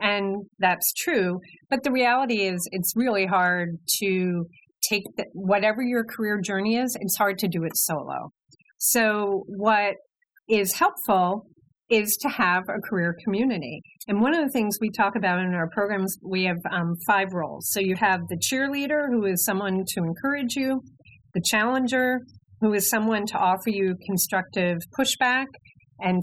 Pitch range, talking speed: 180-225 Hz, 160 wpm